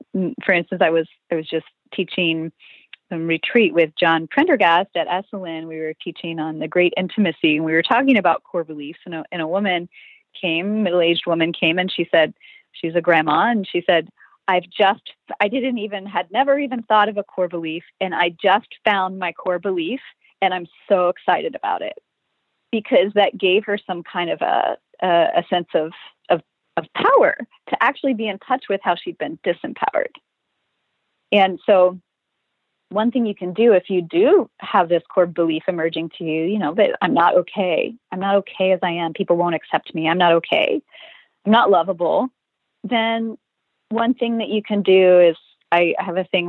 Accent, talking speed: American, 190 wpm